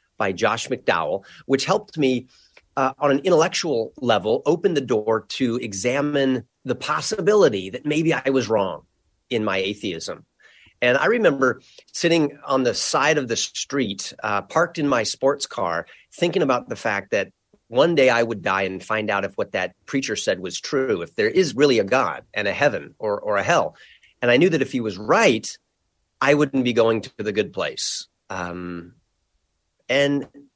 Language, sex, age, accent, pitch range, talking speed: English, male, 30-49, American, 110-145 Hz, 185 wpm